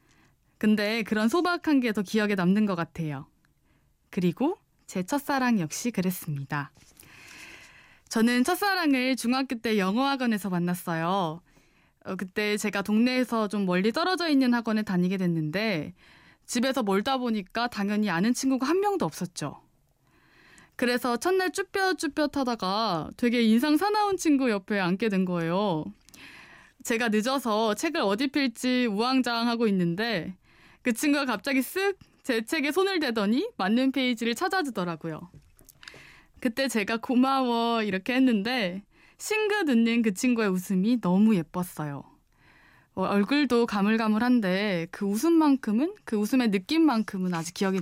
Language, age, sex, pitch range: Korean, 20-39, female, 190-265 Hz